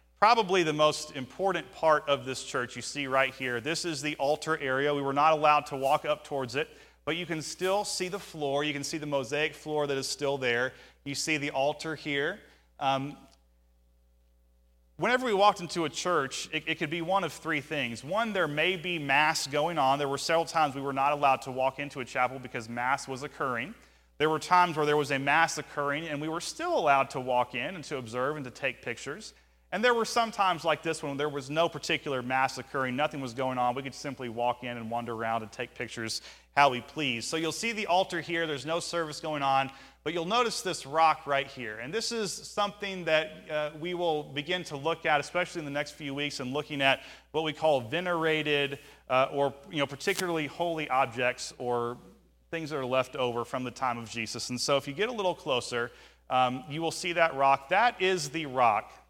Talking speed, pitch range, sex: 225 wpm, 130-165 Hz, male